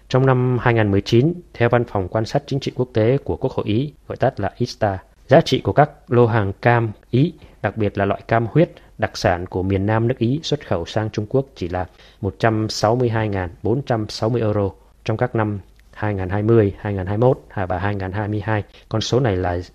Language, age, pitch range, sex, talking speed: Vietnamese, 20-39, 100-120 Hz, male, 185 wpm